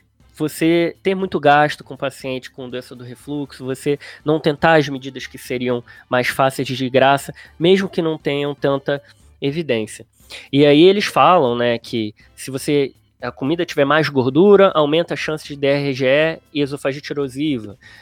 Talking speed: 160 wpm